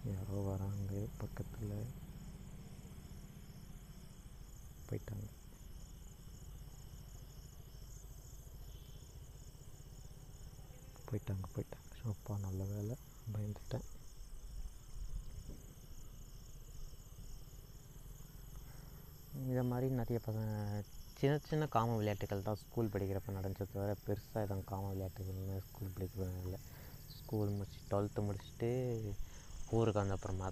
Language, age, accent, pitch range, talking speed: Tamil, 20-39, native, 95-115 Hz, 75 wpm